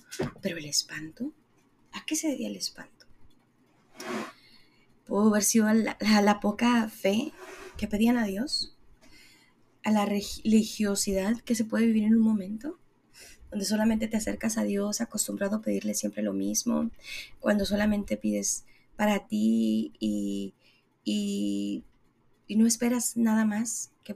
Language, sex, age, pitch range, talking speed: Spanish, female, 20-39, 195-240 Hz, 140 wpm